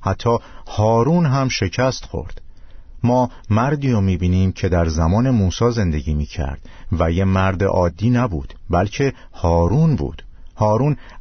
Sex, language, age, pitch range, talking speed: male, Persian, 50-69, 90-120 Hz, 130 wpm